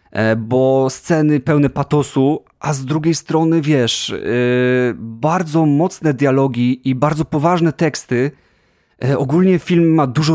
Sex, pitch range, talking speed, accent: male, 115-130 Hz, 130 wpm, native